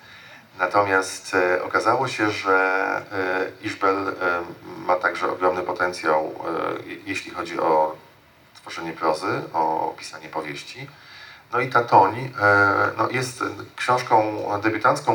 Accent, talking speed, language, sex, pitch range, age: native, 95 wpm, Polish, male, 90-115 Hz, 40-59